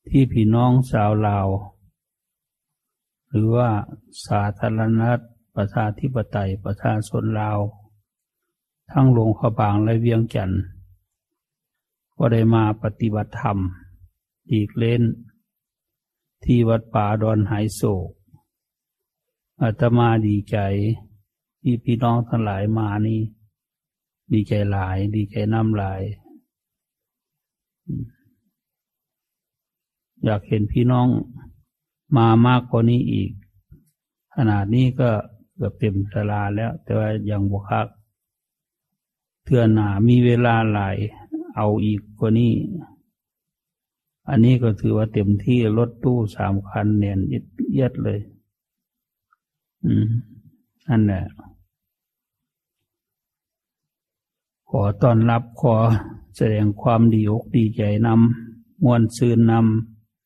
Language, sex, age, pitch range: English, male, 60-79, 105-120 Hz